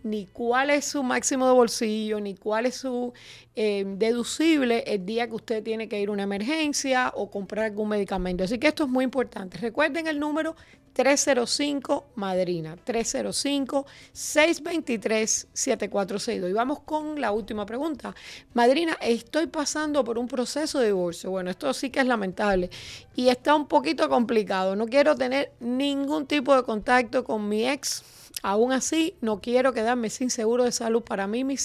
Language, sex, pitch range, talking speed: Spanish, female, 215-265 Hz, 165 wpm